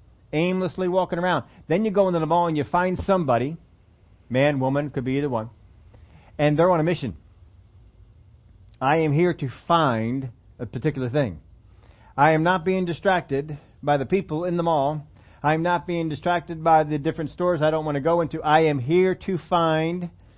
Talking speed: 185 wpm